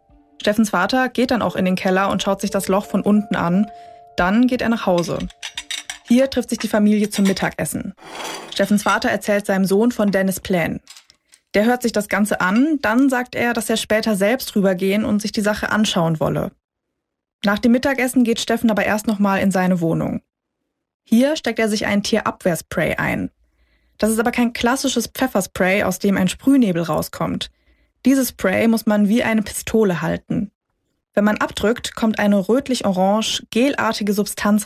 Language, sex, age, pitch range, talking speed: German, female, 20-39, 195-235 Hz, 175 wpm